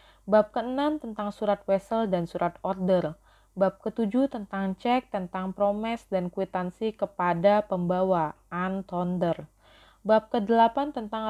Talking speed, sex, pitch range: 115 wpm, female, 180-220 Hz